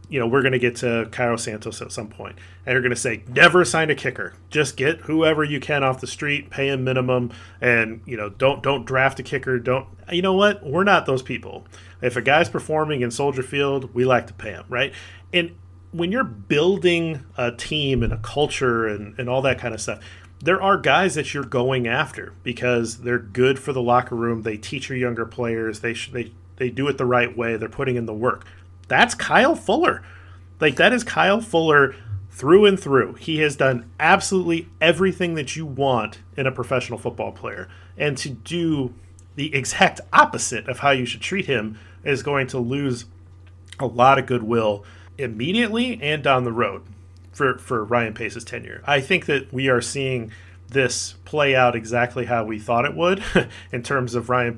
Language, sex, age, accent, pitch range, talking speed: English, male, 40-59, American, 110-140 Hz, 200 wpm